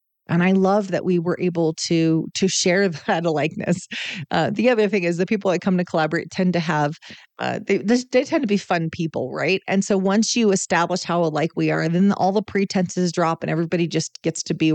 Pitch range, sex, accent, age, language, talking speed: 165-200 Hz, female, American, 30-49, English, 225 wpm